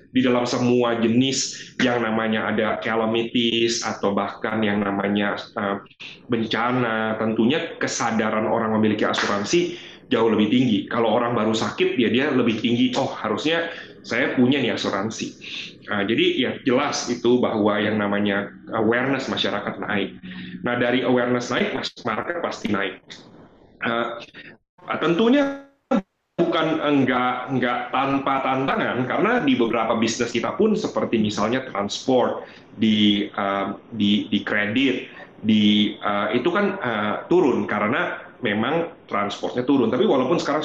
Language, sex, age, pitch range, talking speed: Indonesian, male, 30-49, 110-135 Hz, 130 wpm